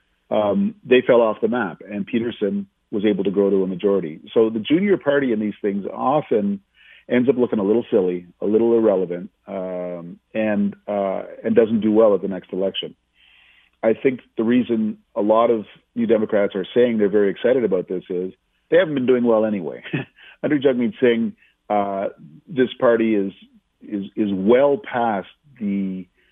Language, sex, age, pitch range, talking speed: English, male, 50-69, 100-115 Hz, 180 wpm